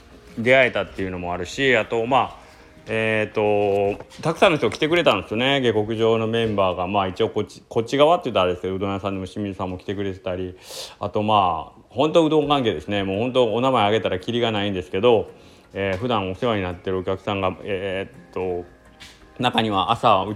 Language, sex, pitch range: Japanese, male, 95-125 Hz